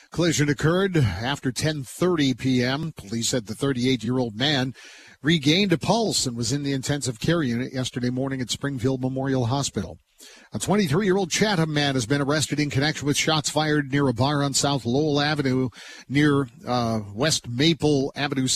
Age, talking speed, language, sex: 50-69, 160 wpm, English, male